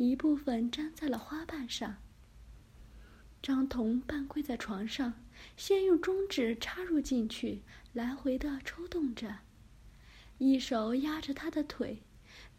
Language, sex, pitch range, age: Chinese, female, 250-325 Hz, 20-39